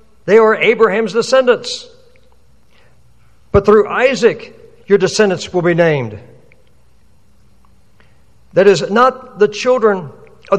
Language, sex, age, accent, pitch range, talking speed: English, male, 60-79, American, 145-225 Hz, 100 wpm